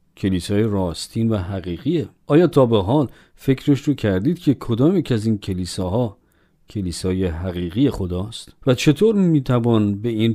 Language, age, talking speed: Persian, 50-69, 145 wpm